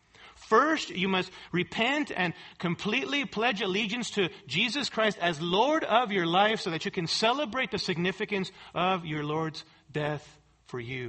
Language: English